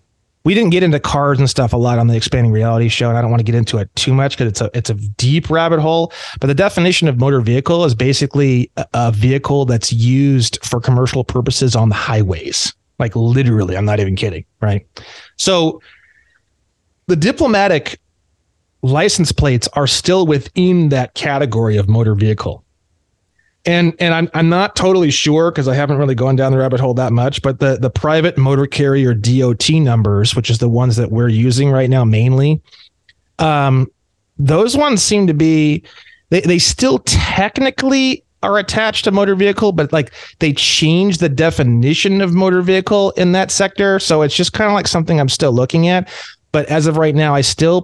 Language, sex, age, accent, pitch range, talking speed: English, male, 30-49, American, 120-165 Hz, 190 wpm